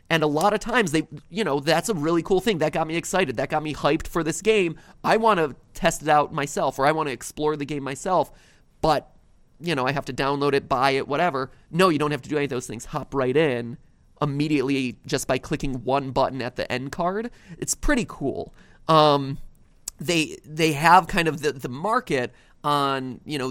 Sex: male